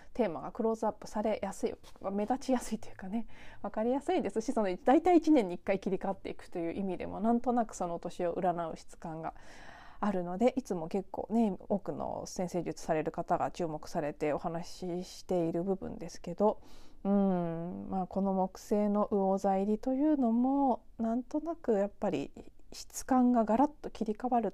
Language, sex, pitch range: Japanese, female, 180-255 Hz